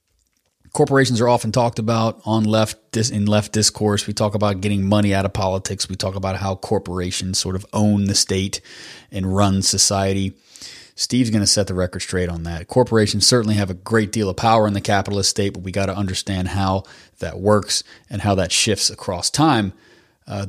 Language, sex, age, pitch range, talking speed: English, male, 30-49, 90-105 Hz, 200 wpm